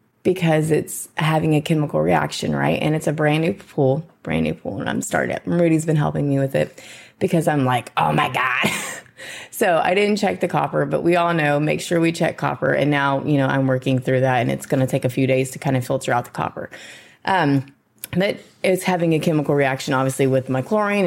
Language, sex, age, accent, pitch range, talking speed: English, female, 20-39, American, 135-180 Hz, 230 wpm